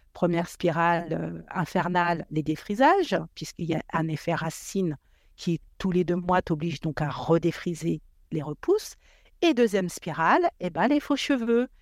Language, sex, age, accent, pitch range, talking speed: French, female, 50-69, French, 160-230 Hz, 155 wpm